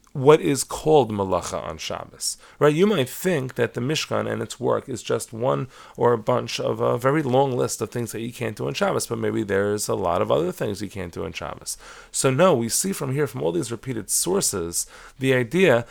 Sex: male